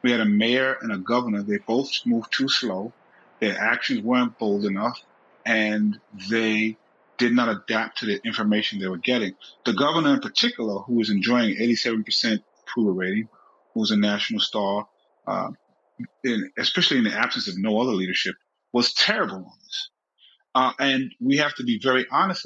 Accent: American